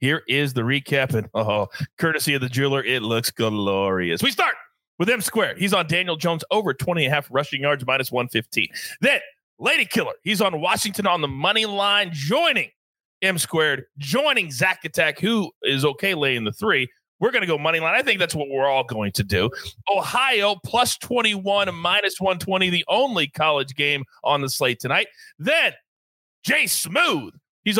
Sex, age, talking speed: male, 30-49, 185 wpm